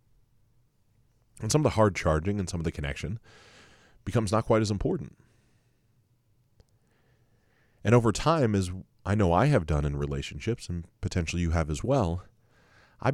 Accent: American